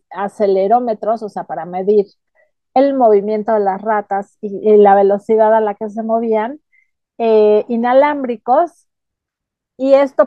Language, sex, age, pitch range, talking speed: Spanish, female, 40-59, 210-250 Hz, 135 wpm